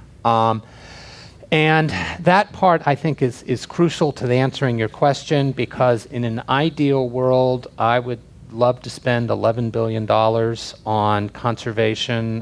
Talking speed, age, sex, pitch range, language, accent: 140 wpm, 40-59, male, 110-125 Hz, English, American